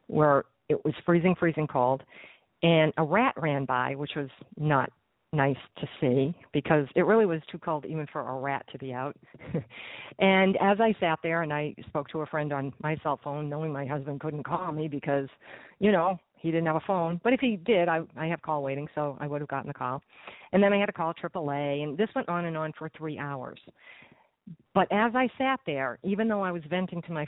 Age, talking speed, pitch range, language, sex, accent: 50-69, 225 wpm, 145-180 Hz, English, female, American